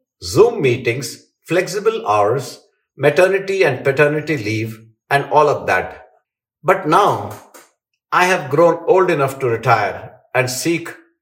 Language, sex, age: English, male, 50-69